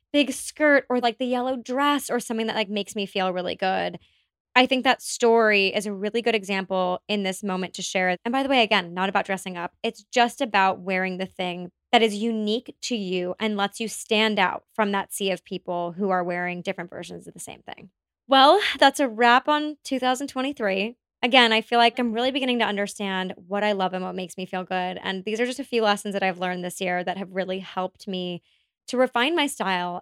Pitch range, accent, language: 190-240 Hz, American, English